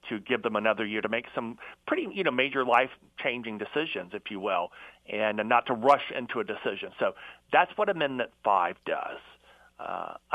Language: English